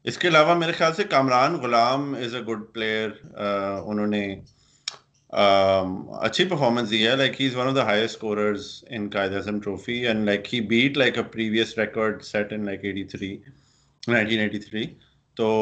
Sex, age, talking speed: male, 30-49, 110 wpm